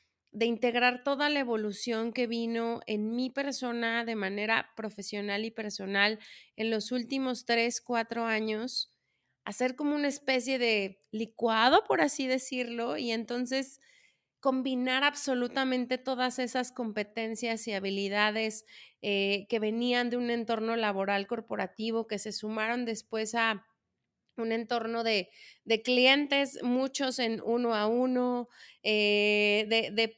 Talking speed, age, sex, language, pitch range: 125 wpm, 30-49, female, Spanish, 215-250 Hz